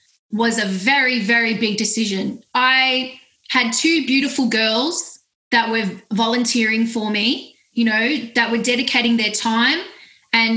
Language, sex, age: English, female, 20-39